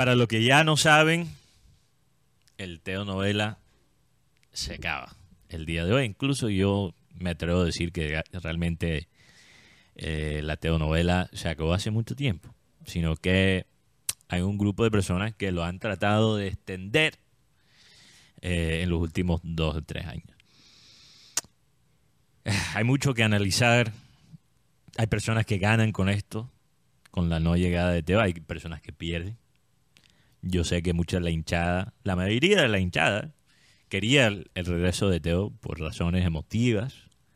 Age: 30-49